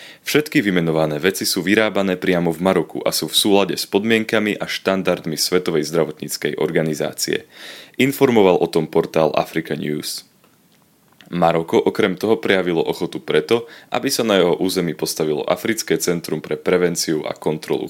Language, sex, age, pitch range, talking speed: Slovak, male, 20-39, 80-100 Hz, 145 wpm